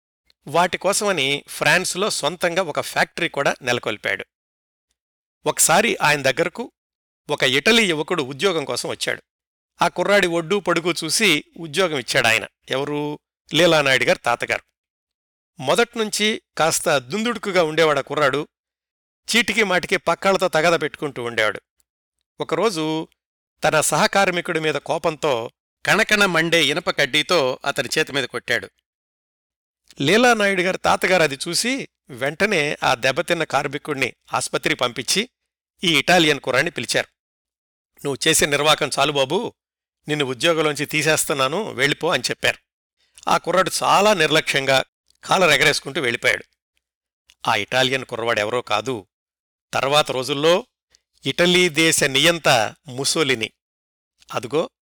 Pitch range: 130-180 Hz